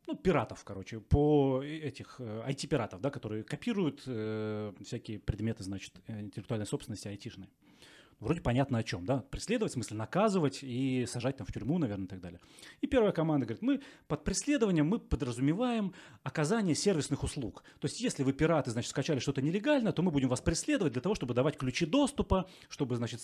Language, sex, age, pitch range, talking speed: Russian, male, 30-49, 120-160 Hz, 175 wpm